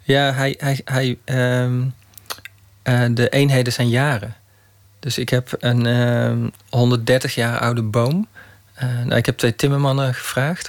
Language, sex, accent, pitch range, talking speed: Dutch, male, Dutch, 115-130 Hz, 145 wpm